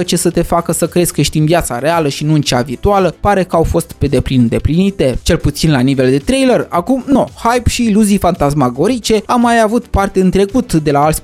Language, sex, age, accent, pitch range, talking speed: Romanian, male, 20-39, native, 155-195 Hz, 235 wpm